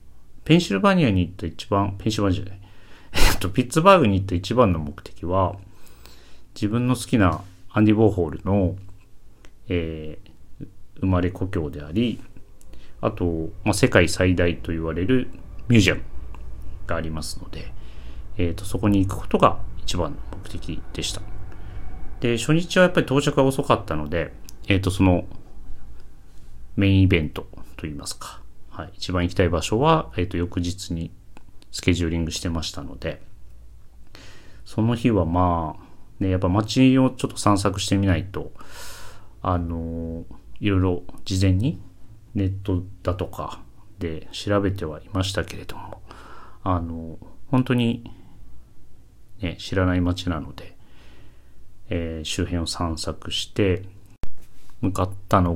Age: 40-59